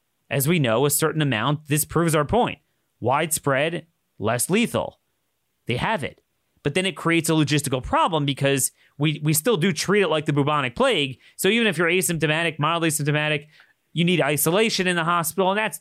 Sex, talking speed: male, 185 wpm